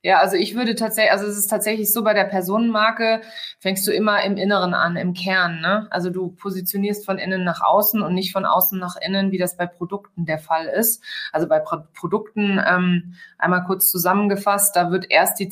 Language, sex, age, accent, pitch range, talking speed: German, female, 20-39, German, 180-210 Hz, 200 wpm